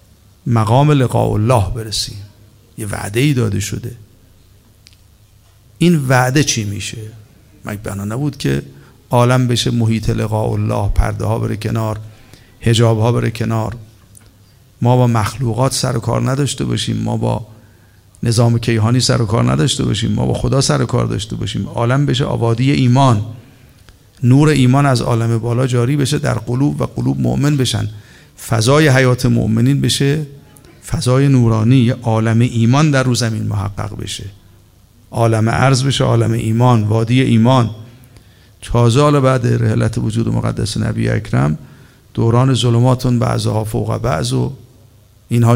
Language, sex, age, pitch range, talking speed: Persian, male, 50-69, 105-125 Hz, 140 wpm